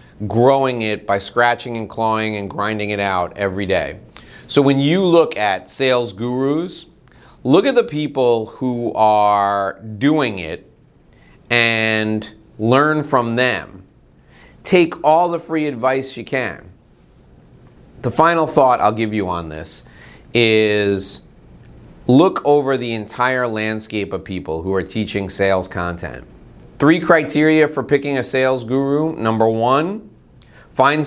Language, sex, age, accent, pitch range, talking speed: English, male, 30-49, American, 110-135 Hz, 135 wpm